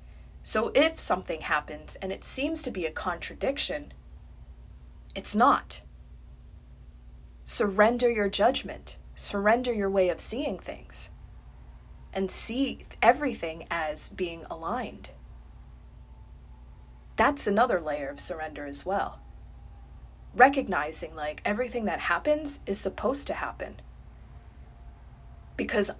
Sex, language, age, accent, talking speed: female, English, 30-49, American, 105 wpm